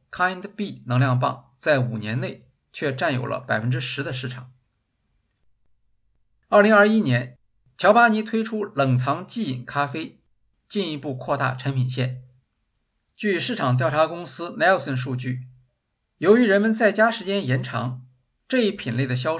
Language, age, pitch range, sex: Chinese, 50-69, 125-160 Hz, male